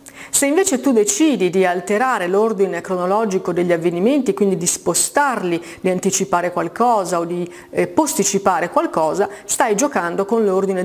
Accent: native